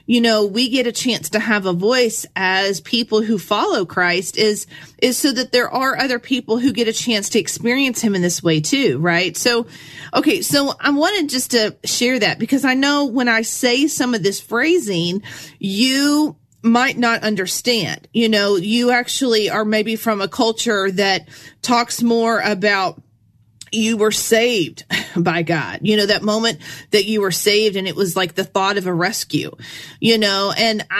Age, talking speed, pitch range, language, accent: 40-59, 185 wpm, 195-245 Hz, English, American